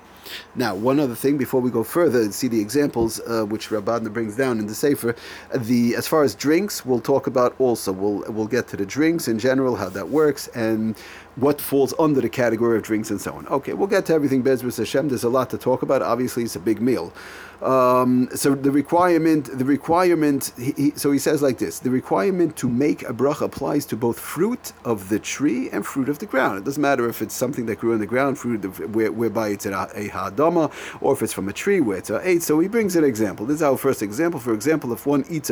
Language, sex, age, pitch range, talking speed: English, male, 40-59, 115-155 Hz, 240 wpm